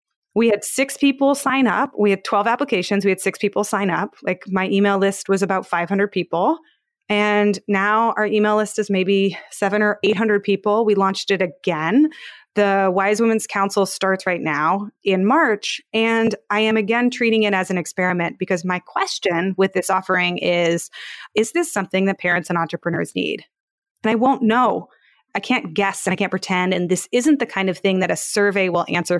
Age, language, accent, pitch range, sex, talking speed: 20-39, English, American, 190-245 Hz, female, 195 wpm